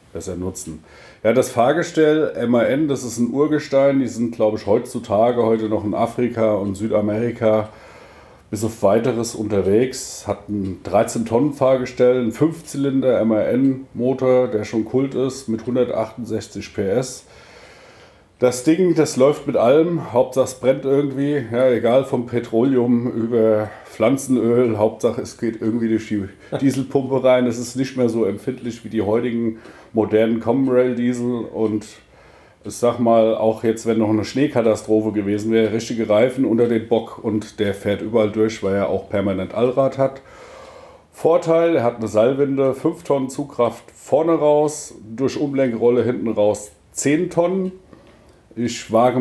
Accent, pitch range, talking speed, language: German, 110-130 Hz, 150 wpm, German